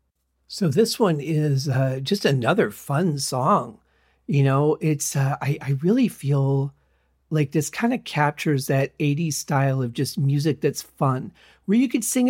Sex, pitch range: male, 135-170 Hz